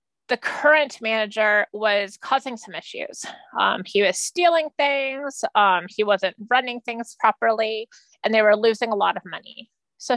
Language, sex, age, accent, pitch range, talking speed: English, female, 30-49, American, 210-265 Hz, 160 wpm